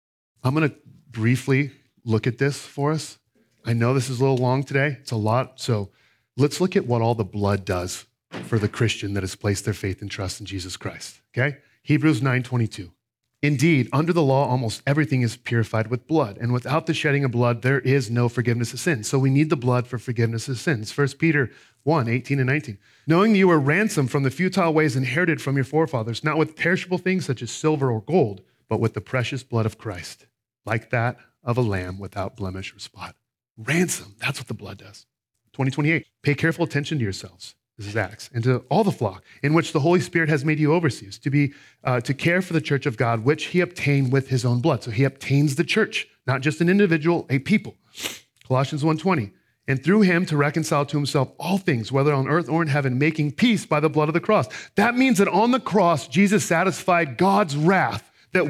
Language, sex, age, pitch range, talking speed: English, male, 40-59, 115-160 Hz, 215 wpm